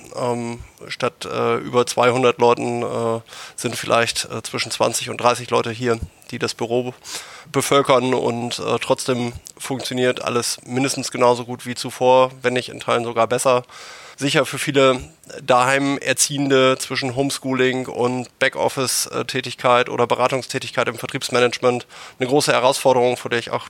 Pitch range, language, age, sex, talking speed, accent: 120-135 Hz, German, 20-39, male, 140 wpm, German